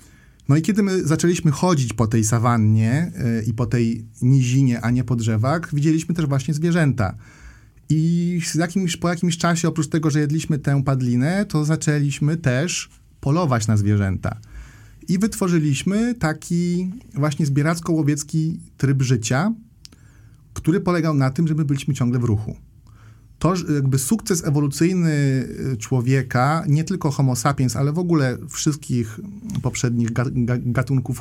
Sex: male